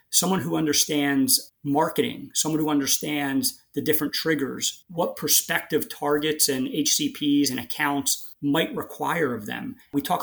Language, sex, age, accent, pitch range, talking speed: English, male, 30-49, American, 135-160 Hz, 135 wpm